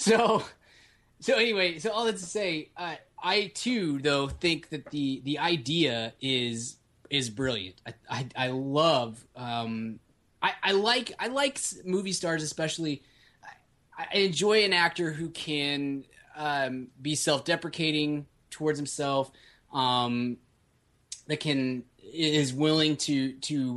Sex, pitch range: male, 125-155 Hz